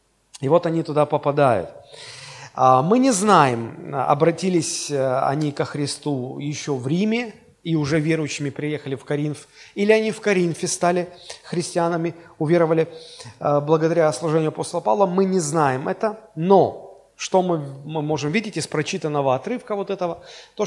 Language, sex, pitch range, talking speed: Russian, male, 150-215 Hz, 135 wpm